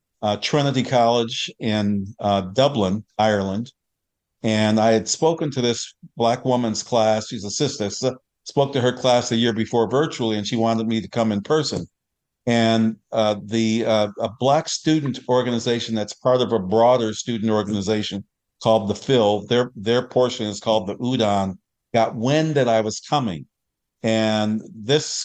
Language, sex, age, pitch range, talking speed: English, male, 50-69, 105-120 Hz, 165 wpm